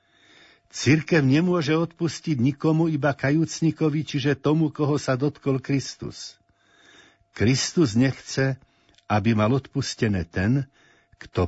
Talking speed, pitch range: 100 wpm, 100-145 Hz